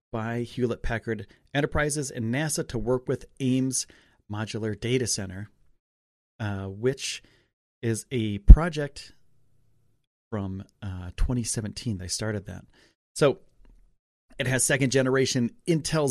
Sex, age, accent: male, 40-59, American